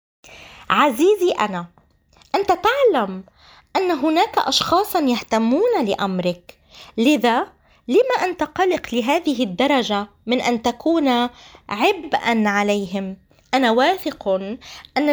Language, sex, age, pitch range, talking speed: Arabic, female, 20-39, 220-325 Hz, 90 wpm